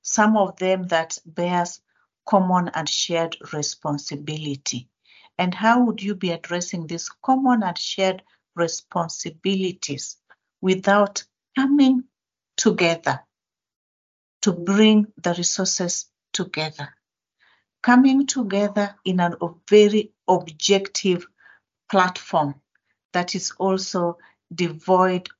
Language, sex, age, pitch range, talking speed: English, female, 50-69, 165-200 Hz, 90 wpm